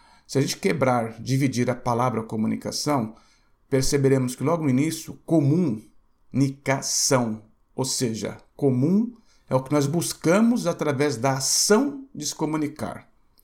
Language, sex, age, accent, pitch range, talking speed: Portuguese, male, 60-79, Brazilian, 125-165 Hz, 125 wpm